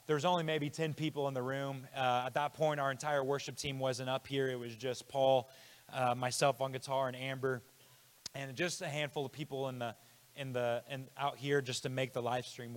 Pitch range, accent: 130-155 Hz, American